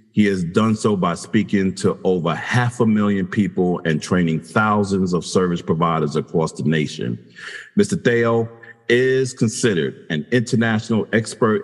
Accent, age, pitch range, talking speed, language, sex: American, 50-69, 85-110 Hz, 145 wpm, English, male